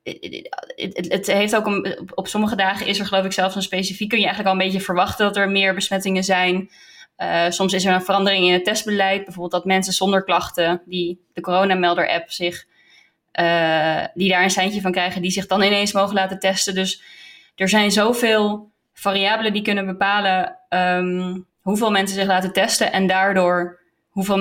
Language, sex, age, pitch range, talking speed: Dutch, female, 20-39, 180-205 Hz, 195 wpm